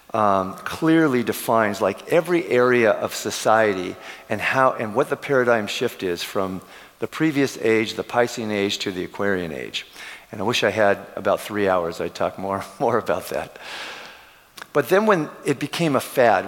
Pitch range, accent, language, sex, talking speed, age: 100-125 Hz, American, English, male, 170 wpm, 50-69